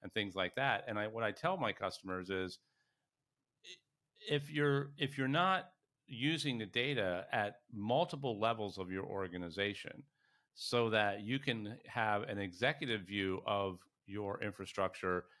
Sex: male